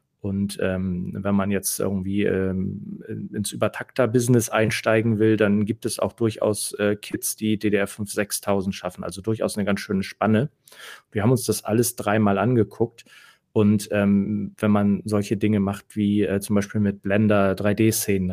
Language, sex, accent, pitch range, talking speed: German, male, German, 100-115 Hz, 160 wpm